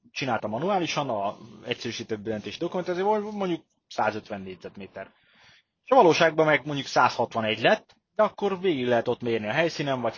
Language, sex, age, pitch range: Hungarian, male, 30-49, 105-140 Hz